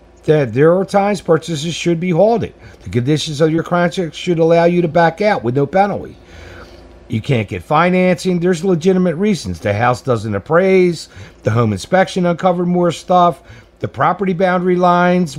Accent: American